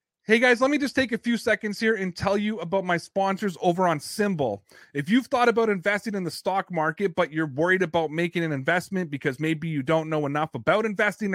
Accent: American